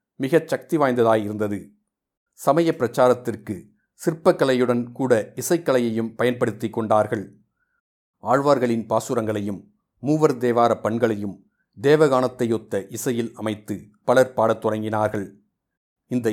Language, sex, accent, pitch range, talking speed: Tamil, male, native, 110-135 Hz, 80 wpm